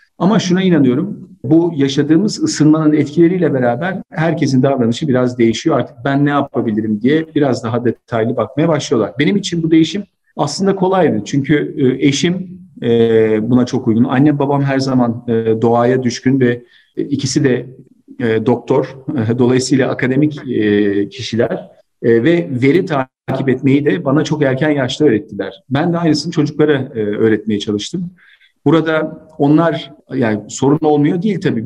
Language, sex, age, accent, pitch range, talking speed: Turkish, male, 40-59, native, 115-150 Hz, 130 wpm